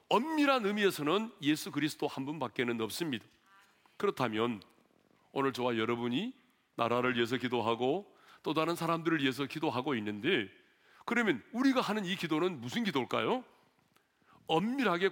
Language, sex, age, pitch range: Korean, male, 40-59, 125-195 Hz